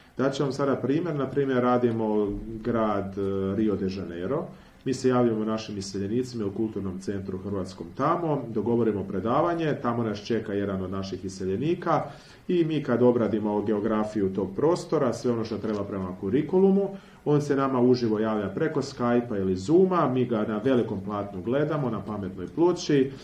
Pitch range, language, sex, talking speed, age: 100-125 Hz, Croatian, male, 160 wpm, 40-59